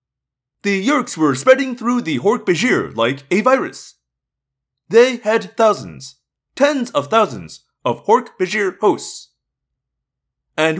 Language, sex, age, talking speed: English, male, 30-49, 110 wpm